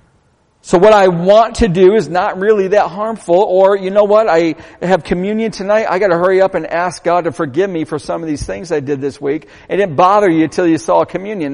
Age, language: 50-69, English